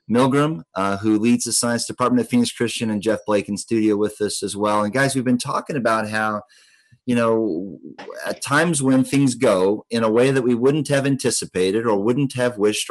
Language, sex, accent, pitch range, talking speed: English, male, American, 105-125 Hz, 210 wpm